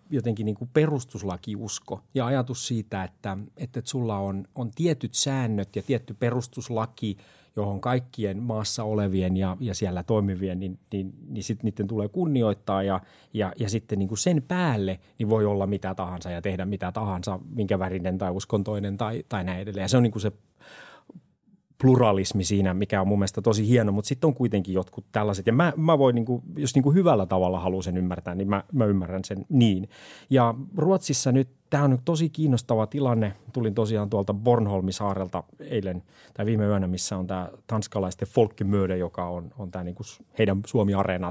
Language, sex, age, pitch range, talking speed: Finnish, male, 30-49, 100-120 Hz, 180 wpm